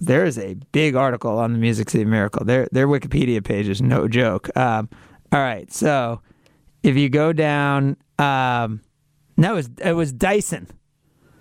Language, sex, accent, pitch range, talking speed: English, male, American, 140-195 Hz, 175 wpm